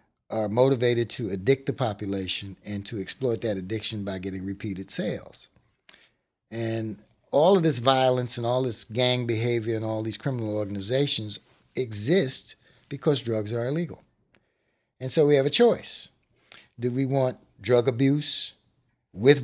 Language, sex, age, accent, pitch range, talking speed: English, male, 60-79, American, 110-150 Hz, 145 wpm